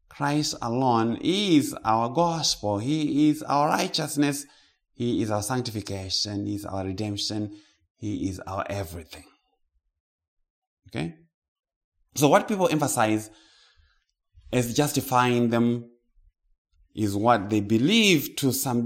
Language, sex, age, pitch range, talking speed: English, male, 20-39, 100-145 Hz, 110 wpm